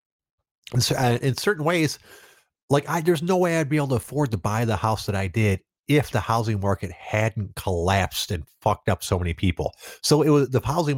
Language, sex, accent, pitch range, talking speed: English, male, American, 95-130 Hz, 200 wpm